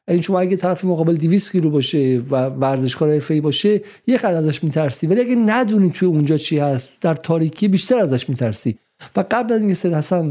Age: 50-69